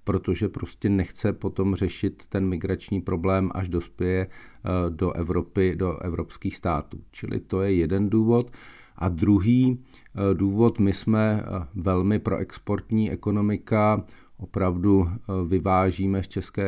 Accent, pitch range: native, 95-105 Hz